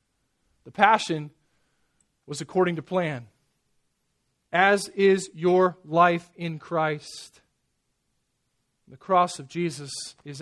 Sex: male